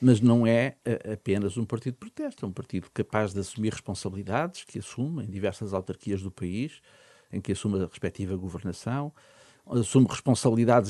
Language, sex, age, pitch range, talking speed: Portuguese, male, 50-69, 100-130 Hz, 165 wpm